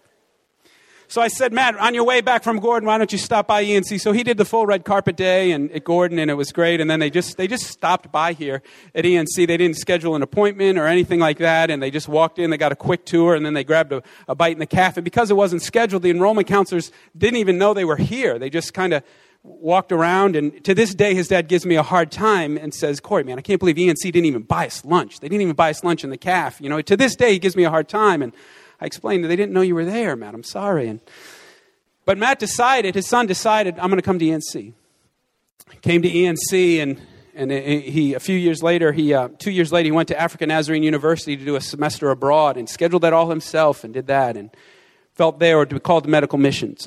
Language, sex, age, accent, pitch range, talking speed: English, male, 40-59, American, 150-190 Hz, 260 wpm